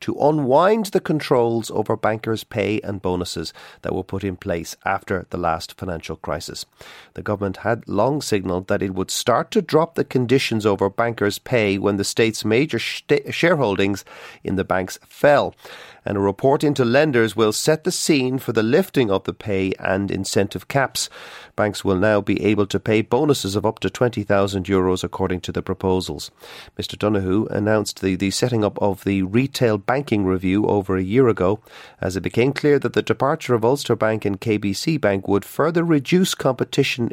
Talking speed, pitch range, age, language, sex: 180 wpm, 95-125 Hz, 40-59, English, male